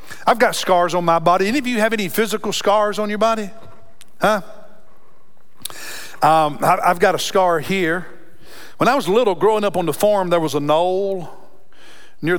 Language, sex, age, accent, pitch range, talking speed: English, male, 50-69, American, 165-220 Hz, 180 wpm